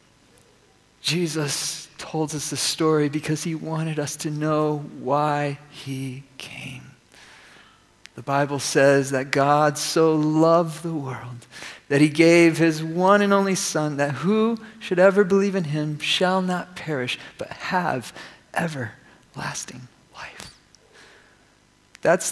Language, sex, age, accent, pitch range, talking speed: English, male, 40-59, American, 145-175 Hz, 125 wpm